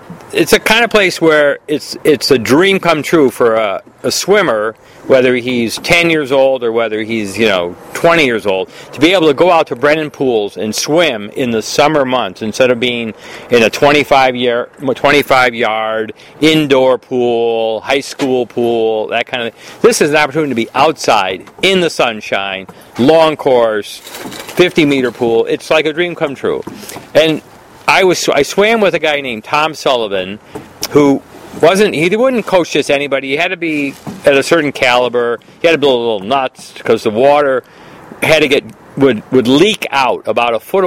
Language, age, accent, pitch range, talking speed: English, 50-69, American, 115-155 Hz, 190 wpm